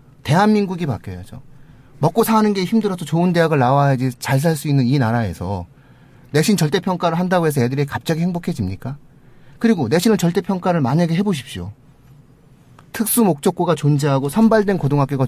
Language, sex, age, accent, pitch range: Korean, male, 30-49, native, 130-175 Hz